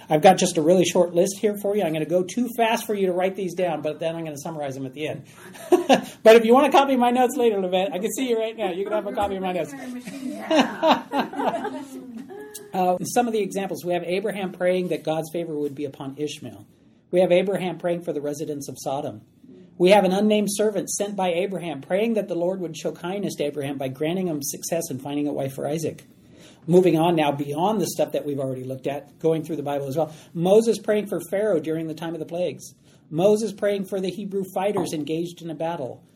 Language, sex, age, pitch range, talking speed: English, male, 40-59, 155-205 Hz, 240 wpm